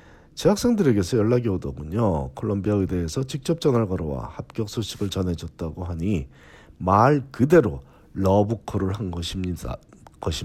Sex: male